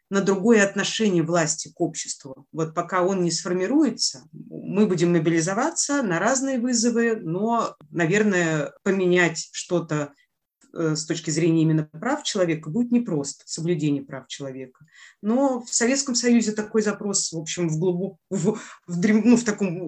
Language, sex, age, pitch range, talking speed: English, female, 30-49, 155-205 Hz, 140 wpm